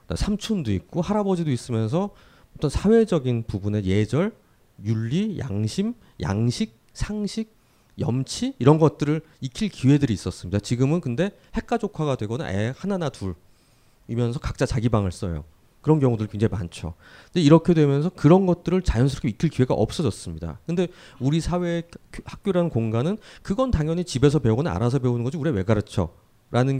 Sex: male